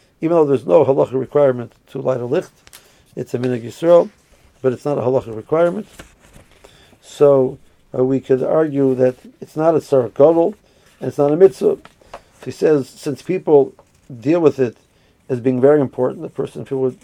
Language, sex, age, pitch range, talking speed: English, male, 50-69, 130-155 Hz, 170 wpm